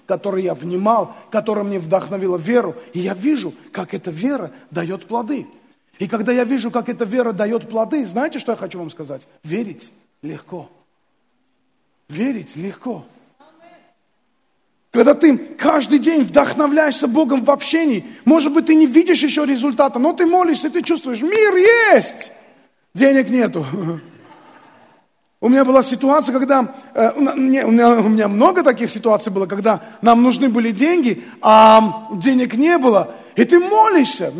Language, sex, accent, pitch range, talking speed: Russian, male, native, 215-300 Hz, 140 wpm